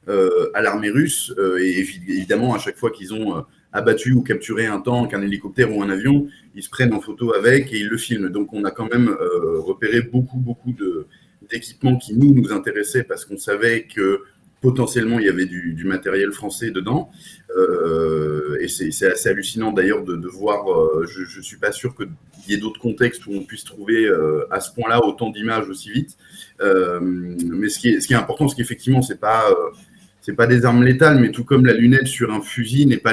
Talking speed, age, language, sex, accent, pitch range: 230 wpm, 30-49, French, male, French, 105-135 Hz